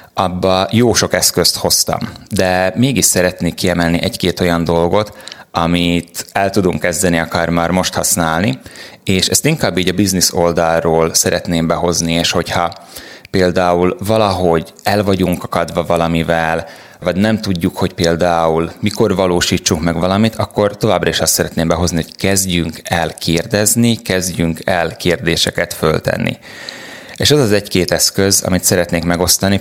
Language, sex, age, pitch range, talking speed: Hungarian, male, 30-49, 85-100 Hz, 140 wpm